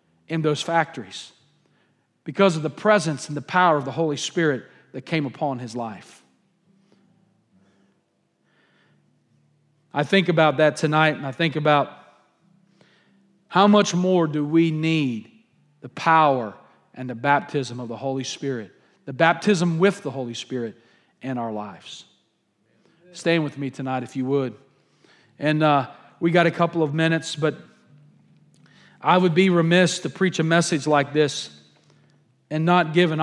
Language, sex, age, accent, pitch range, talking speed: English, male, 40-59, American, 140-170 Hz, 150 wpm